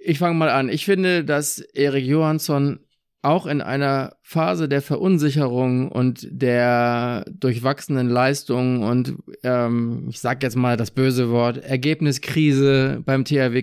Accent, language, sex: German, German, male